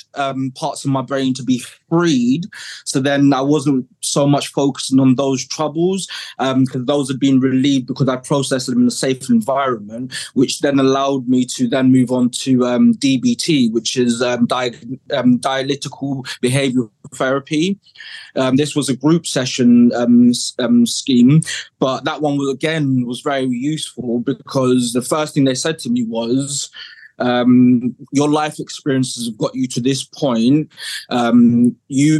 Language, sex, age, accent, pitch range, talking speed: English, male, 20-39, British, 125-140 Hz, 165 wpm